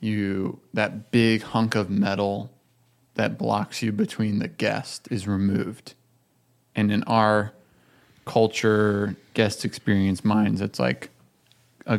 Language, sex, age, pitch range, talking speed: English, male, 20-39, 105-125 Hz, 120 wpm